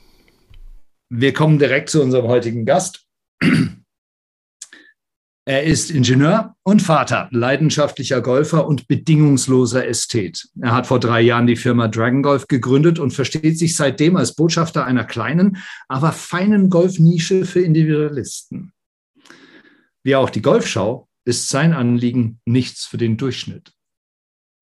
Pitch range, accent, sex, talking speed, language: 125-160 Hz, German, male, 125 wpm, German